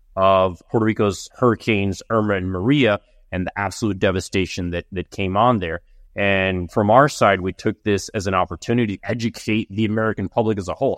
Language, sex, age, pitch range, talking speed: English, male, 30-49, 95-125 Hz, 185 wpm